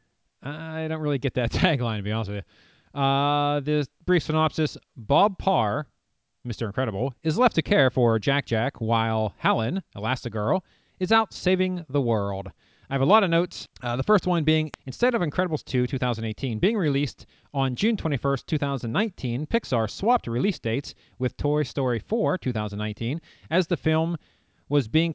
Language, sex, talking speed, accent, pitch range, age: English, male, 165 wpm, American, 120-170 Hz, 40-59